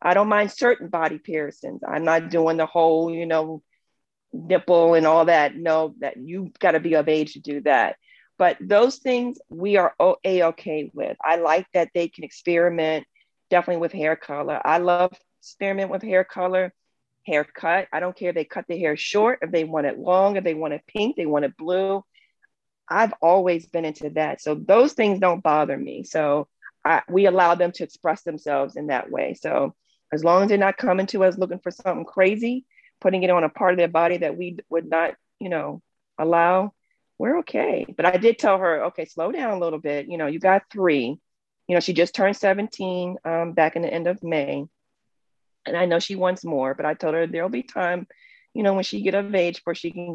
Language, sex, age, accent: English, female, 40-59, American